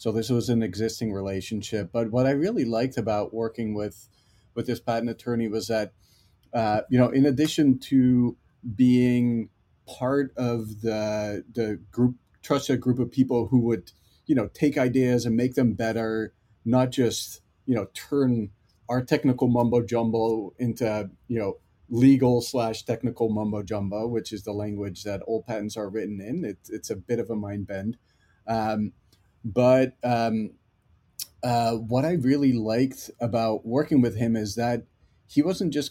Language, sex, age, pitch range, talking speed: English, male, 40-59, 110-125 Hz, 165 wpm